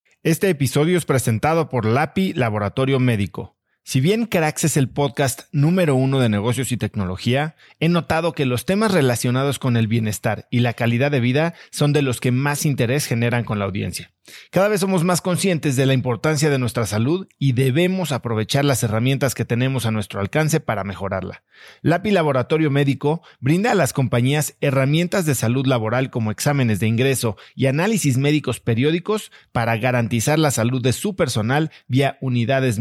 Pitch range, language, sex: 120-155 Hz, Spanish, male